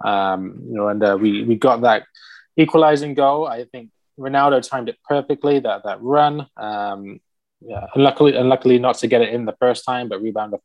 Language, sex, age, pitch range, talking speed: English, male, 20-39, 105-135 Hz, 210 wpm